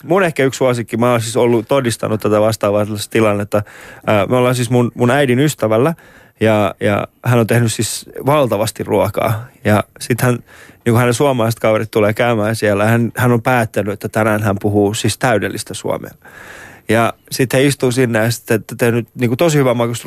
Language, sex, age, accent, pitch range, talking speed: Finnish, male, 20-39, native, 115-150 Hz, 180 wpm